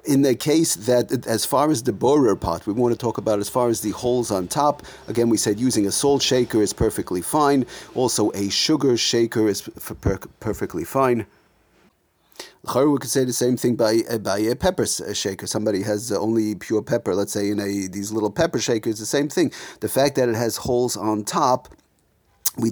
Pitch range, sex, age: 110-130 Hz, male, 40-59